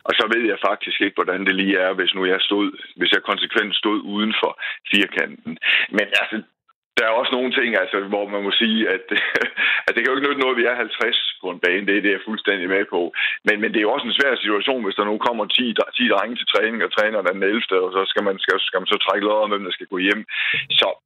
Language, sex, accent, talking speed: Danish, male, native, 270 wpm